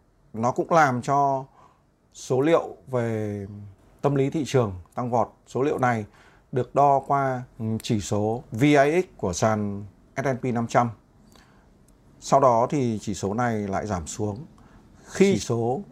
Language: Vietnamese